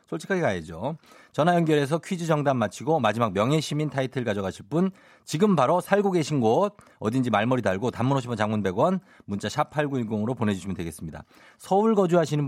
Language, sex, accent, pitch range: Korean, male, native, 115-180 Hz